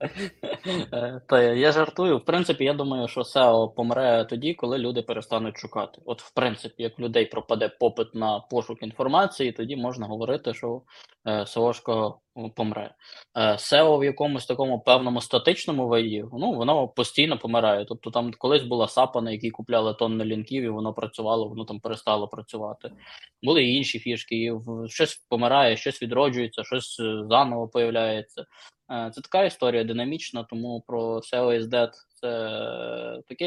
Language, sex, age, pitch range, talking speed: Ukrainian, male, 20-39, 115-130 Hz, 145 wpm